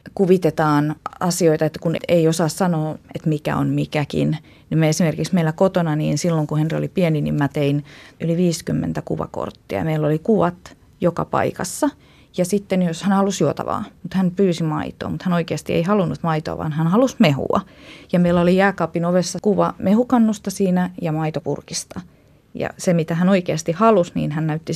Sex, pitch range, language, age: female, 155-190 Hz, Finnish, 30-49